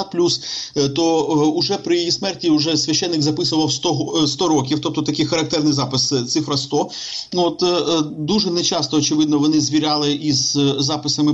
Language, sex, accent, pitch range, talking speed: Ukrainian, male, native, 145-165 Hz, 150 wpm